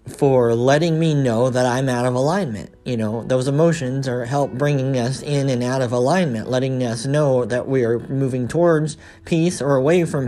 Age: 40-59